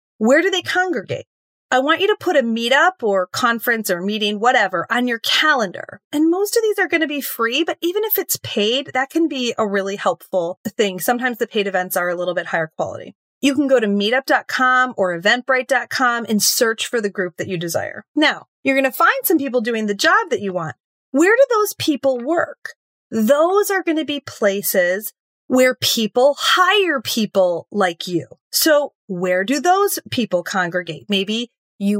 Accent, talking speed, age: American, 195 wpm, 30-49